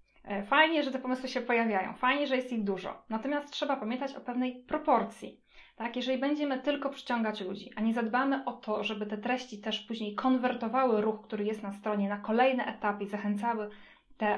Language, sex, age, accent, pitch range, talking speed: Polish, female, 20-39, native, 210-260 Hz, 190 wpm